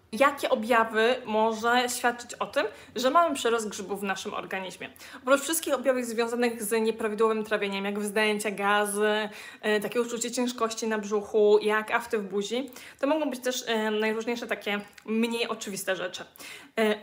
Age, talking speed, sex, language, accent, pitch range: 20-39, 155 wpm, female, Polish, native, 215-250 Hz